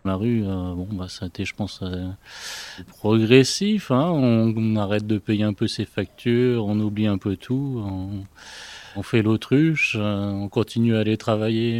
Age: 30-49